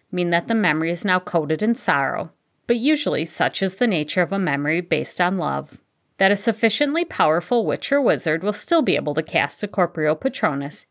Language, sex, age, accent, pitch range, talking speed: English, female, 50-69, American, 160-240 Hz, 205 wpm